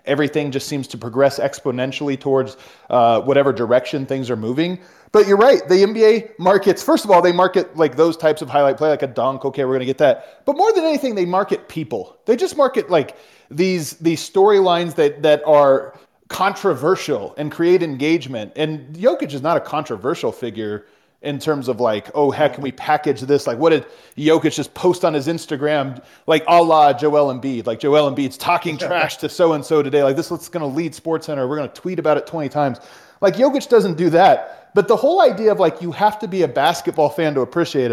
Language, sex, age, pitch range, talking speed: English, male, 30-49, 140-175 Hz, 215 wpm